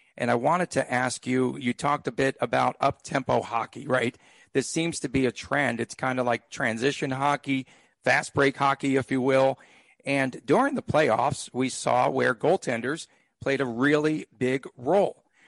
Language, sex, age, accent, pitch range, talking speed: English, male, 50-69, American, 130-155 Hz, 170 wpm